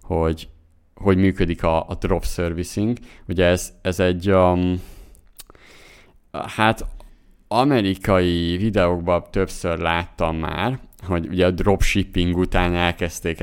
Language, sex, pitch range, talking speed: Hungarian, male, 85-95 Hz, 105 wpm